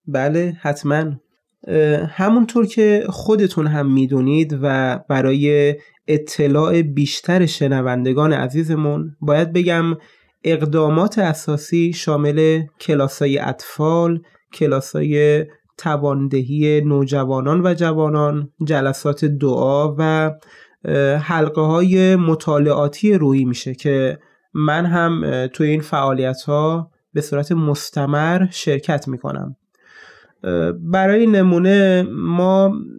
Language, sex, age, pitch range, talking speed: Persian, male, 20-39, 145-170 Hz, 85 wpm